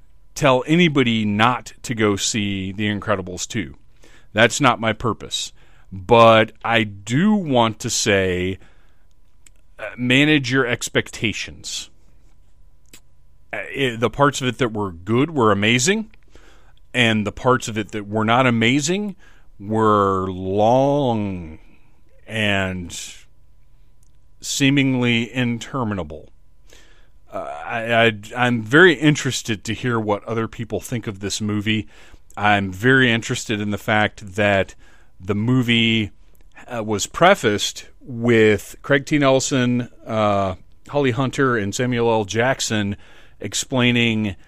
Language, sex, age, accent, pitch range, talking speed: English, male, 40-59, American, 100-125 Hz, 110 wpm